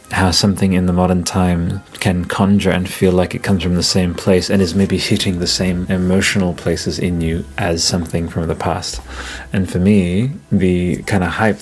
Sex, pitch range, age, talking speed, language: male, 90-110 Hz, 30-49, 200 wpm, English